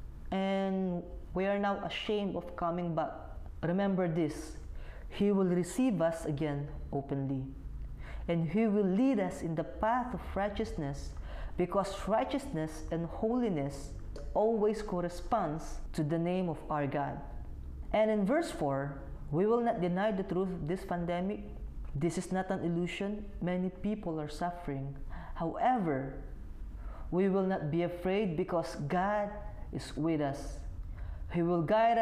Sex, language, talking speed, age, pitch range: female, Filipino, 140 wpm, 20-39, 145-205 Hz